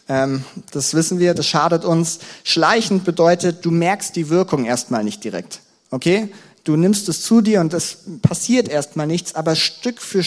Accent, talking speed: German, 170 wpm